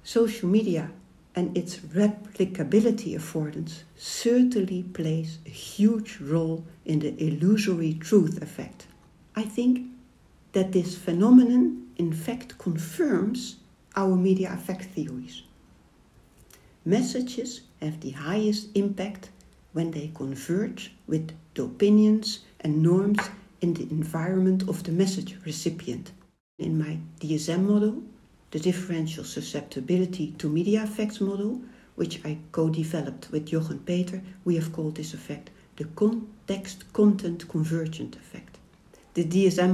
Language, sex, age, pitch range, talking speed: English, female, 60-79, 160-195 Hz, 115 wpm